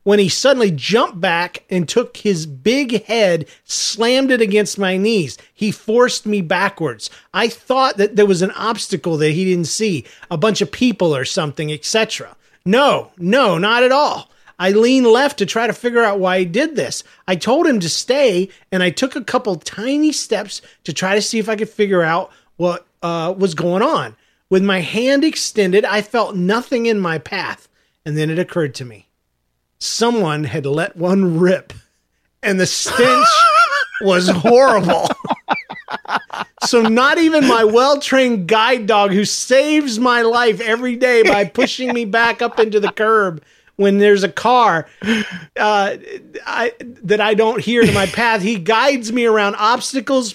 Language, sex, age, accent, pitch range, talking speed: English, male, 40-59, American, 185-245 Hz, 170 wpm